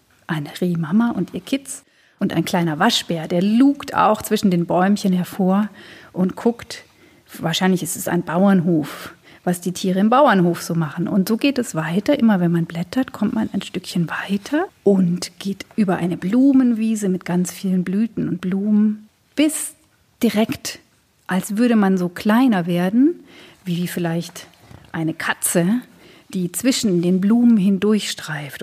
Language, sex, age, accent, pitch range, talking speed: German, female, 40-59, German, 175-230 Hz, 150 wpm